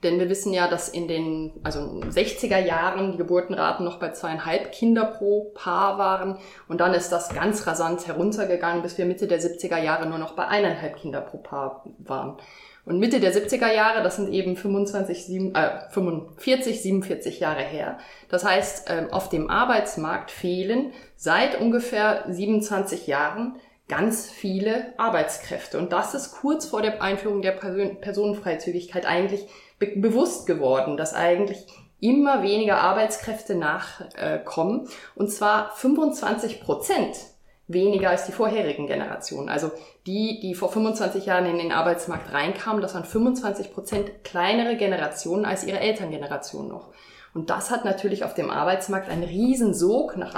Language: German